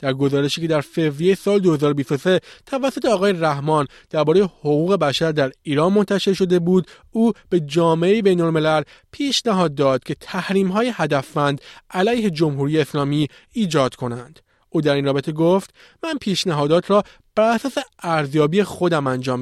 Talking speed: 135 wpm